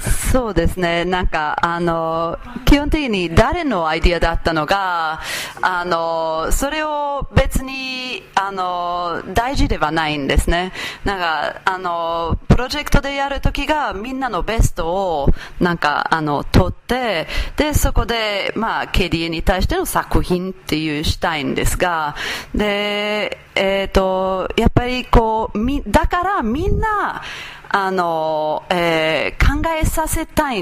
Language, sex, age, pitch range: Japanese, female, 30-49, 165-280 Hz